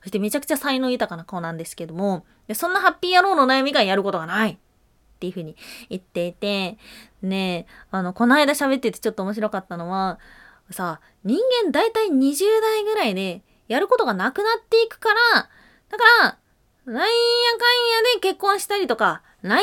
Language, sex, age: Japanese, female, 20-39